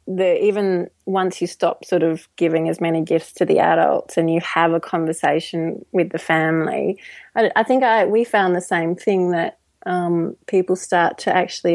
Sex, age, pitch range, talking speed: female, 30-49, 165-190 Hz, 190 wpm